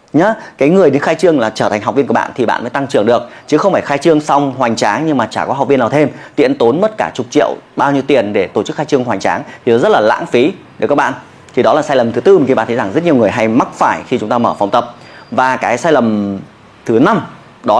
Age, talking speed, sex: 20-39, 300 wpm, male